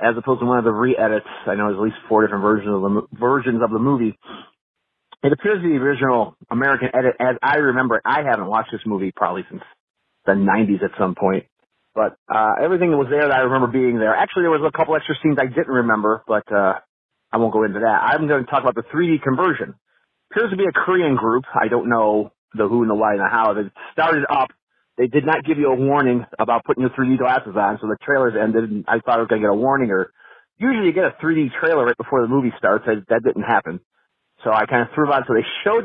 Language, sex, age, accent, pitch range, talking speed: English, male, 40-59, American, 110-155 Hz, 260 wpm